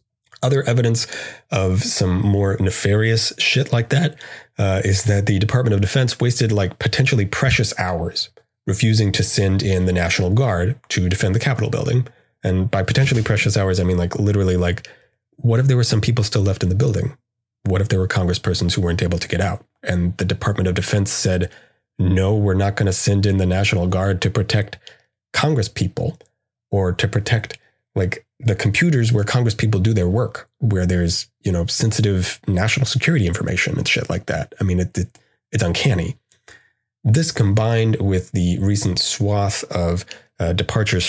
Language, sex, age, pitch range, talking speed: English, male, 30-49, 95-115 Hz, 180 wpm